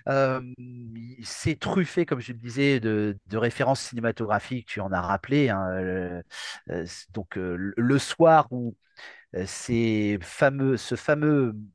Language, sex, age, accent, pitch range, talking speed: French, male, 40-59, French, 95-135 Hz, 130 wpm